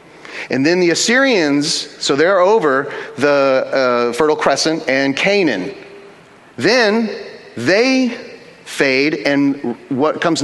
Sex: male